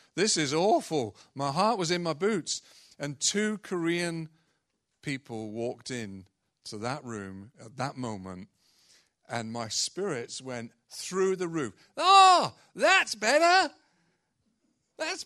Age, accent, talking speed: 40-59, British, 125 wpm